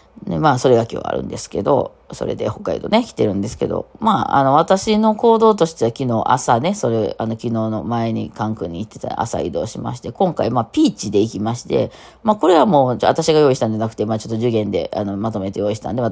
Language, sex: Japanese, female